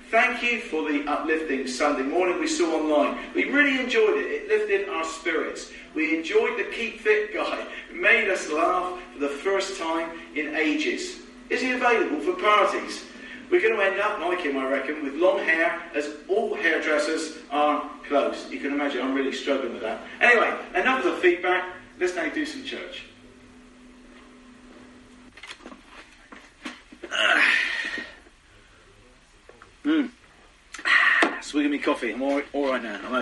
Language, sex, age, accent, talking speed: English, male, 40-59, British, 150 wpm